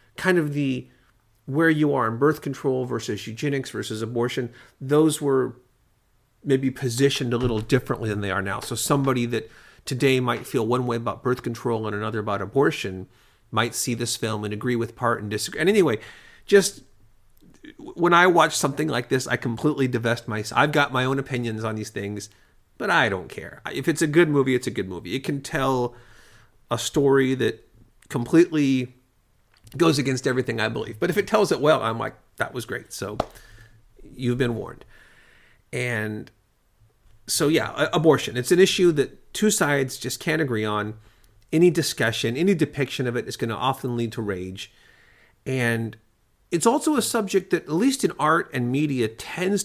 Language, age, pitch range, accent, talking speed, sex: English, 40-59, 110-145 Hz, American, 180 wpm, male